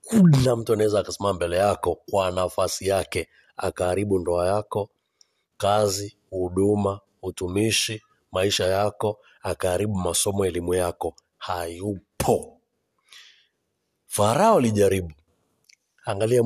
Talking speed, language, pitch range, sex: 90 wpm, Swahili, 100-155 Hz, male